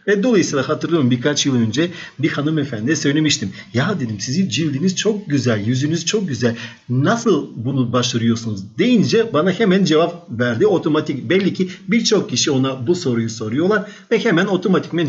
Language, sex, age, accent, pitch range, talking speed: Turkish, male, 50-69, native, 120-175 Hz, 150 wpm